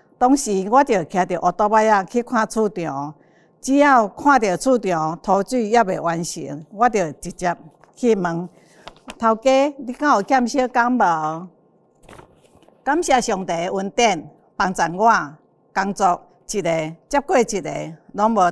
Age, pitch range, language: 50-69, 175-235 Hz, Chinese